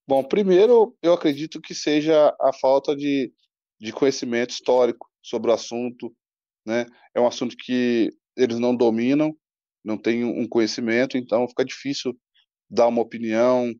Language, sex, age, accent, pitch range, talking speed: Portuguese, male, 20-39, Brazilian, 115-140 Hz, 145 wpm